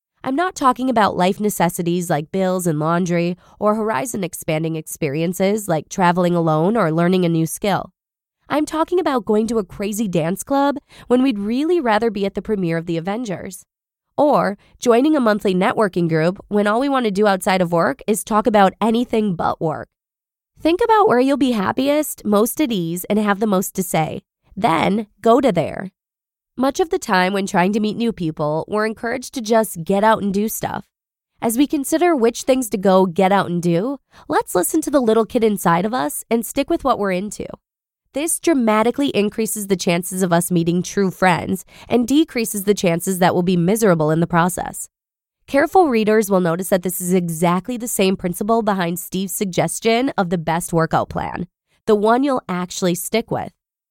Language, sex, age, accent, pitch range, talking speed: English, female, 20-39, American, 180-235 Hz, 190 wpm